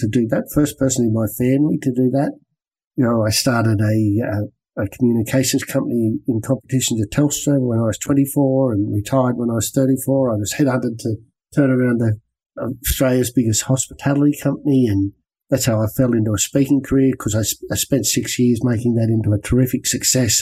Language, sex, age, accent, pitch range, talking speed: English, male, 50-69, Australian, 110-135 Hz, 200 wpm